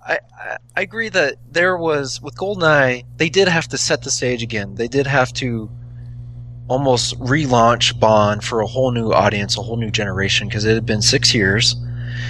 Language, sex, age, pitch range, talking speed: English, male, 20-39, 115-125 Hz, 190 wpm